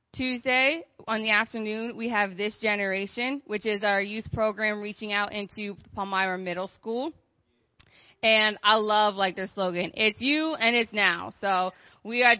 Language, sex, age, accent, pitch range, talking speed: English, female, 20-39, American, 205-235 Hz, 160 wpm